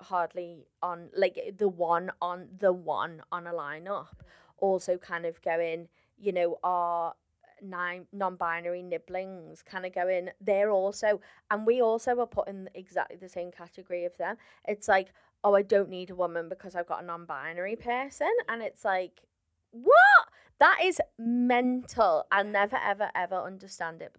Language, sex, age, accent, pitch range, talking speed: English, female, 20-39, British, 170-205 Hz, 170 wpm